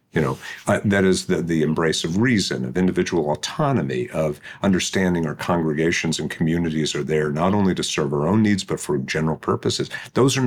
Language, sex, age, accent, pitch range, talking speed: English, male, 50-69, American, 80-110 Hz, 195 wpm